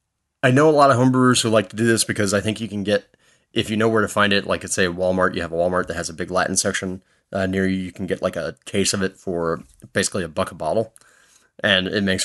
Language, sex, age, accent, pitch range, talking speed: English, male, 30-49, American, 90-115 Hz, 285 wpm